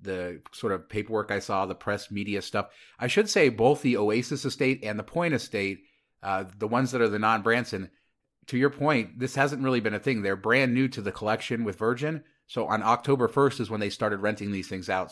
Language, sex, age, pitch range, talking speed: English, male, 30-49, 100-120 Hz, 230 wpm